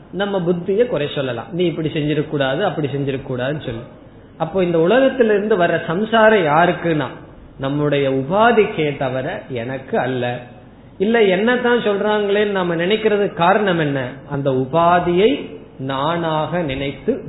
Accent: native